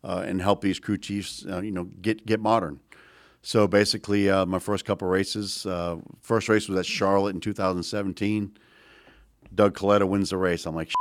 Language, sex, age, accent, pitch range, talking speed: English, male, 50-69, American, 95-105 Hz, 190 wpm